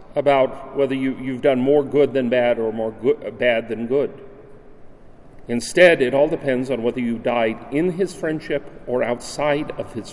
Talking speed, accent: 165 wpm, American